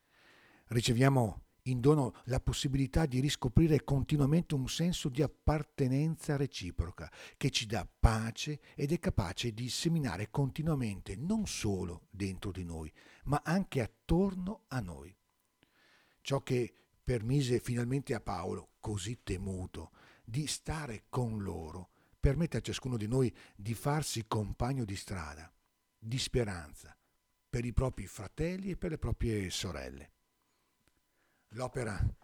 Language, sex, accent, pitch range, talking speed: Italian, male, native, 105-145 Hz, 125 wpm